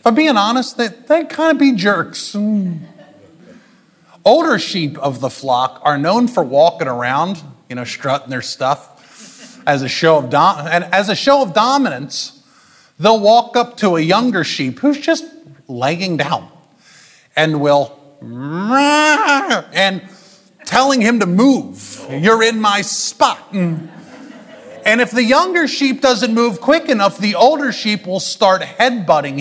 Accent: American